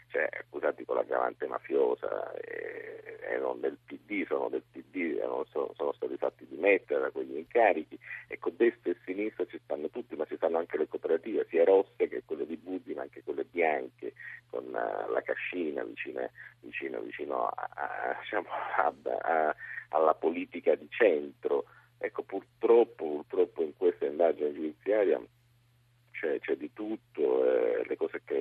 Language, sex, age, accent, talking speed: Italian, male, 50-69, native, 165 wpm